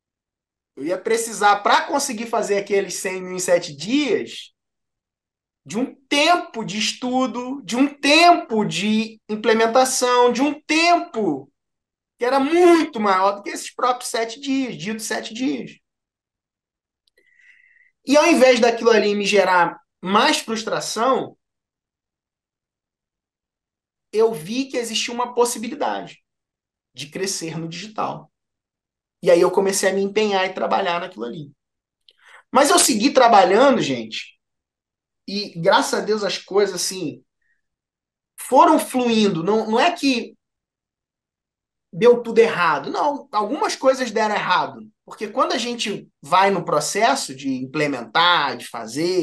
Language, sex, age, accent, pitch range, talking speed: Portuguese, male, 20-39, Brazilian, 185-260 Hz, 130 wpm